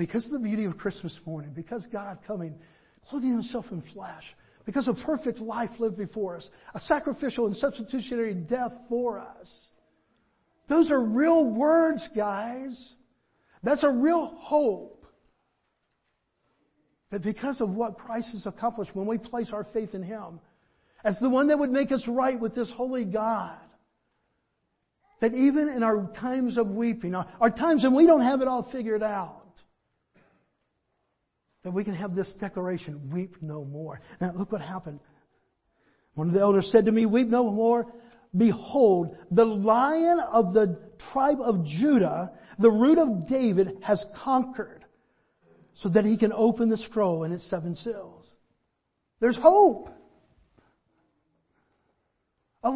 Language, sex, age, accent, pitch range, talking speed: English, male, 50-69, American, 195-255 Hz, 150 wpm